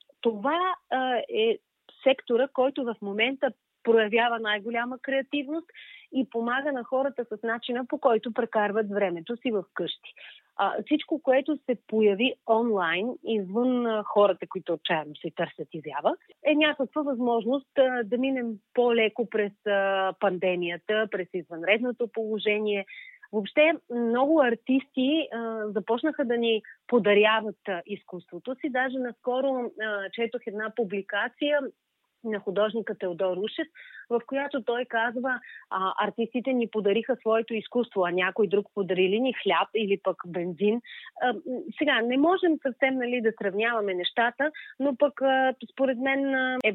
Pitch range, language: 210-265 Hz, Bulgarian